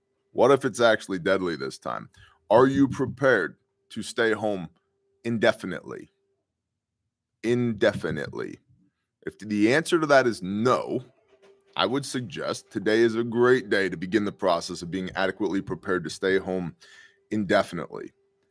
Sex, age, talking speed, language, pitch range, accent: male, 20-39, 135 wpm, English, 95-125 Hz, American